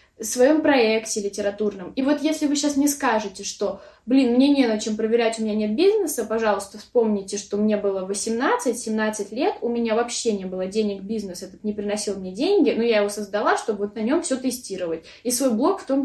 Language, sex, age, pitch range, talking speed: Russian, female, 20-39, 215-265 Hz, 210 wpm